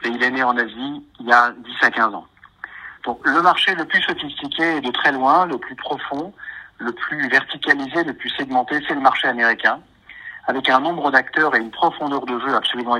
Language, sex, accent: French, male, French